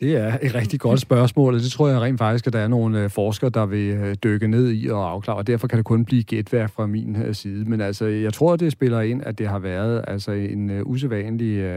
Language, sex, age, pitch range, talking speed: Danish, male, 40-59, 100-120 Hz, 250 wpm